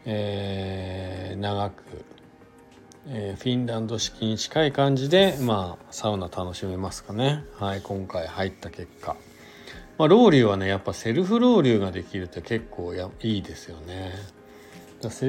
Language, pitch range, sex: Japanese, 95-135 Hz, male